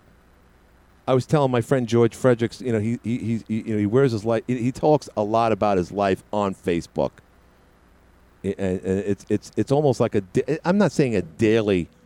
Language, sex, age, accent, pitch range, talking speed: English, male, 50-69, American, 90-130 Hz, 210 wpm